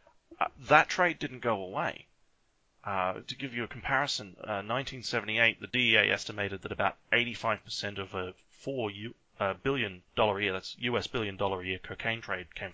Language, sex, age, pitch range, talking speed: English, male, 30-49, 100-120 Hz, 165 wpm